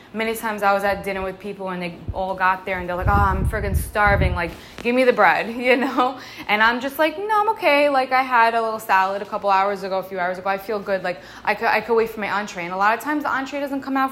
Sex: female